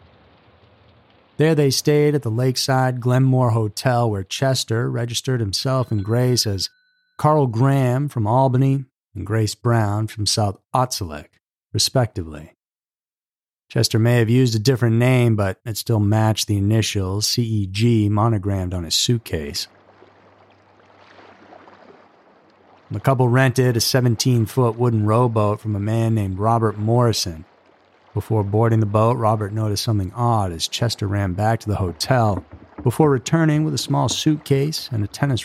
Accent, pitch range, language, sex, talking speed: American, 105-135 Hz, English, male, 140 wpm